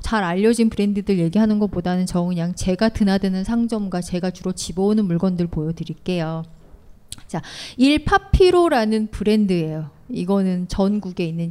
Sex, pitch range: female, 170-230 Hz